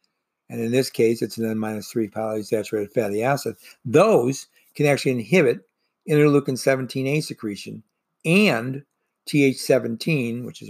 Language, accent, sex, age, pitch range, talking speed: English, American, male, 60-79, 115-145 Hz, 110 wpm